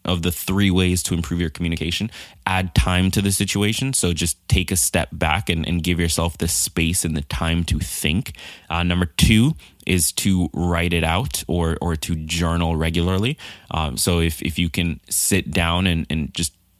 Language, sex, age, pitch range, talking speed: English, male, 20-39, 80-95 Hz, 195 wpm